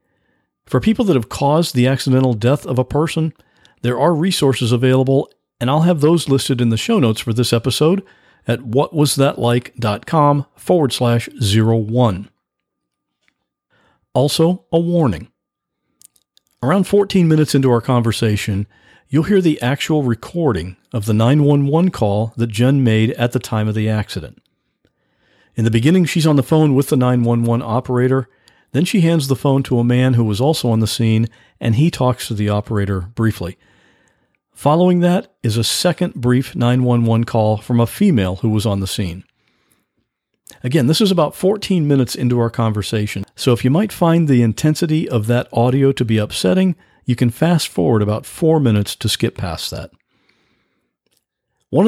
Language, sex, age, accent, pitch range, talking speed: English, male, 50-69, American, 115-150 Hz, 165 wpm